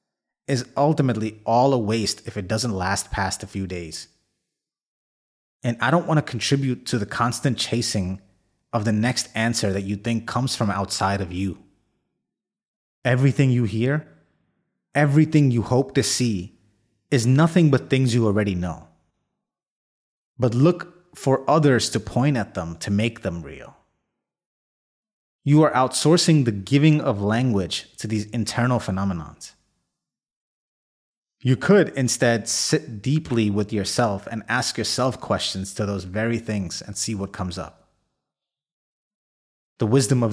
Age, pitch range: 30-49, 100-135 Hz